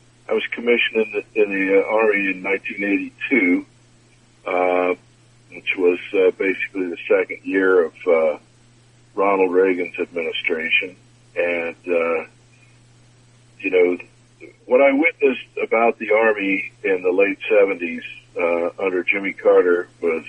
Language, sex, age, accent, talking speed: English, male, 60-79, American, 125 wpm